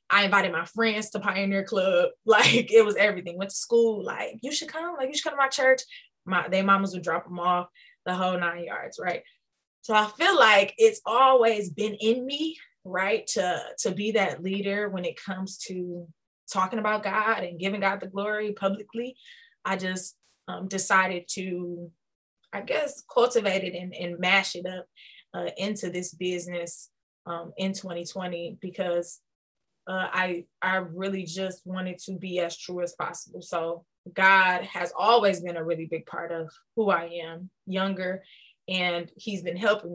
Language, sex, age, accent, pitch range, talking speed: English, female, 20-39, American, 175-215 Hz, 175 wpm